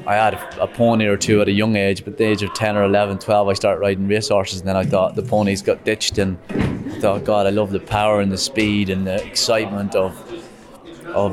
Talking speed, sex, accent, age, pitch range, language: 250 wpm, male, British, 20-39, 100-115 Hz, English